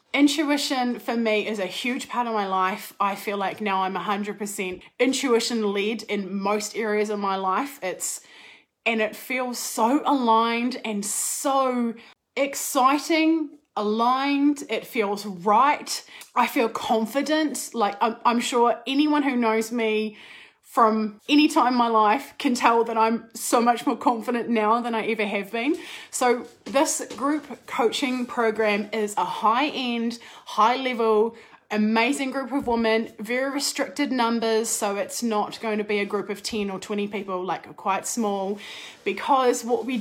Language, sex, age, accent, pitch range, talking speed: English, female, 20-39, Australian, 210-255 Hz, 155 wpm